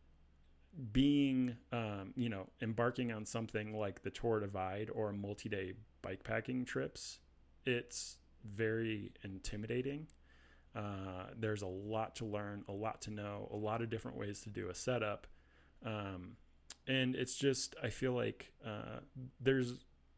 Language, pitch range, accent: English, 95-120 Hz, American